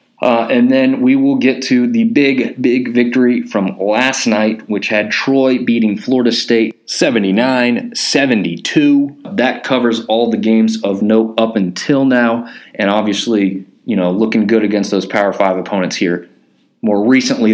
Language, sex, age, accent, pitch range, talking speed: English, male, 30-49, American, 110-130 Hz, 155 wpm